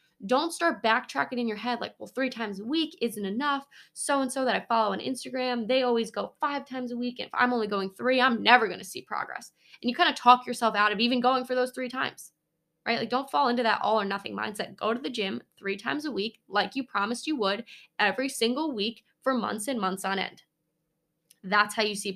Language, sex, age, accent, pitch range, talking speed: English, female, 10-29, American, 205-255 Hz, 240 wpm